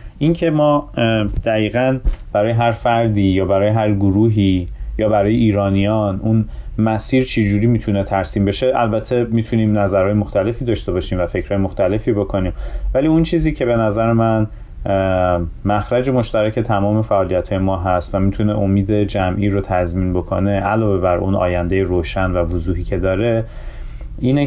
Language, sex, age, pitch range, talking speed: Persian, male, 30-49, 95-110 Hz, 145 wpm